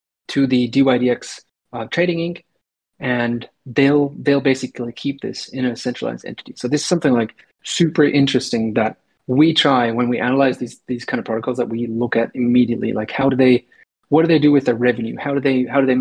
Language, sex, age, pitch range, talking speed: English, male, 30-49, 120-140 Hz, 210 wpm